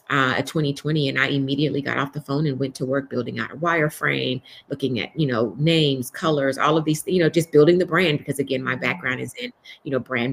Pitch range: 130-150 Hz